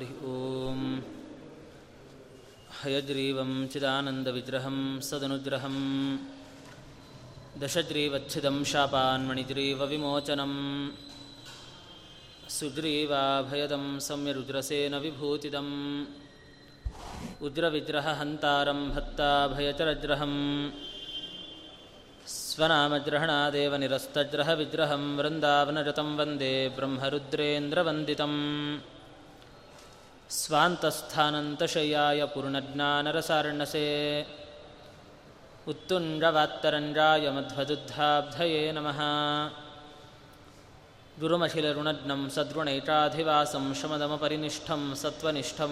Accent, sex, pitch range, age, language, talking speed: native, male, 140-150 Hz, 20-39, Kannada, 35 wpm